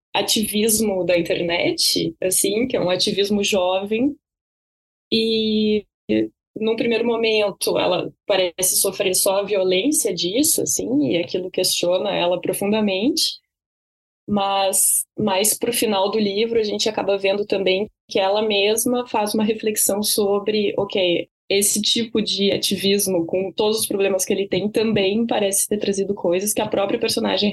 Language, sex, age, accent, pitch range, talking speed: Portuguese, female, 20-39, Brazilian, 180-220 Hz, 145 wpm